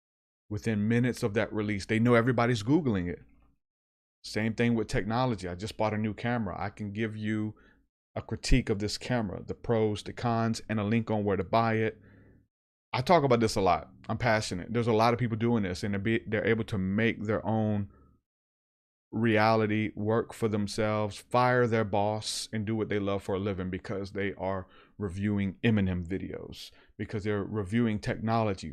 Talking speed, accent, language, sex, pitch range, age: 185 wpm, American, English, male, 100-115 Hz, 30-49